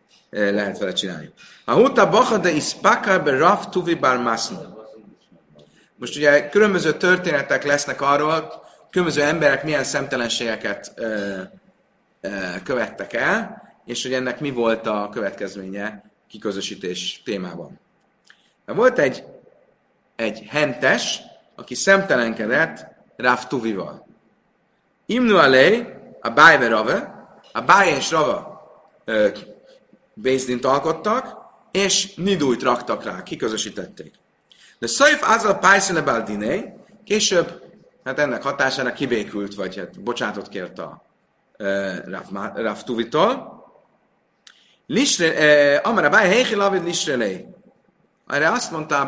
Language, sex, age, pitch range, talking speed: Hungarian, male, 30-49, 115-185 Hz, 95 wpm